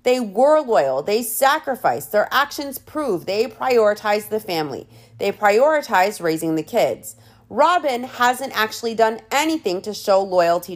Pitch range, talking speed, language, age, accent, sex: 180-245 Hz, 140 wpm, English, 30-49, American, female